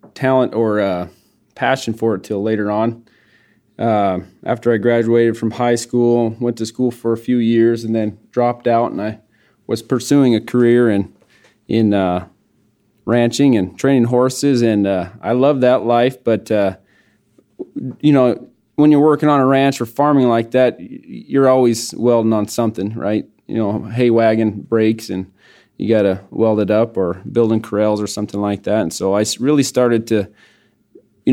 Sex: male